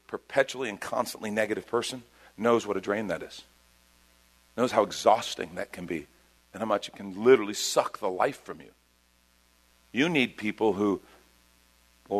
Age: 50-69